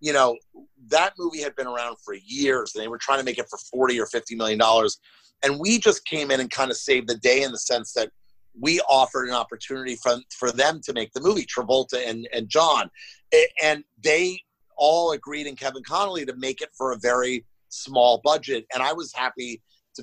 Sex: male